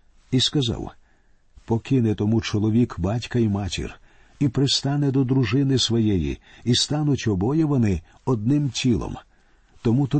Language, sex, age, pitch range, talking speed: Ukrainian, male, 50-69, 105-135 Hz, 125 wpm